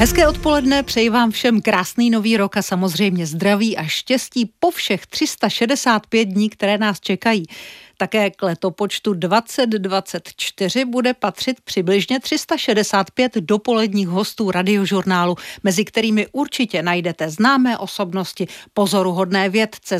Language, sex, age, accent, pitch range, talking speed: Czech, female, 50-69, native, 185-235 Hz, 115 wpm